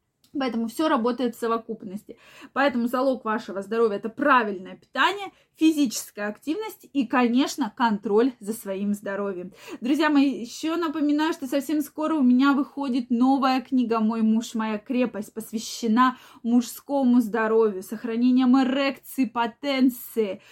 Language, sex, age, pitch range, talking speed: Russian, female, 20-39, 225-275 Hz, 130 wpm